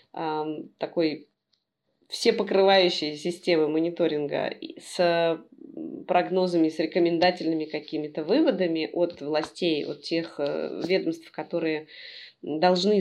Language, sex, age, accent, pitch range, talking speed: Russian, female, 20-39, native, 160-210 Hz, 80 wpm